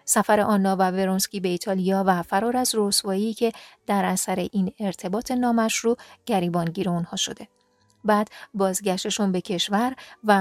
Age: 40-59